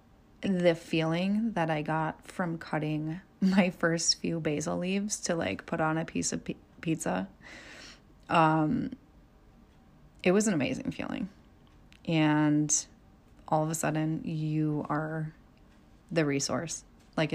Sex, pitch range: female, 155-185 Hz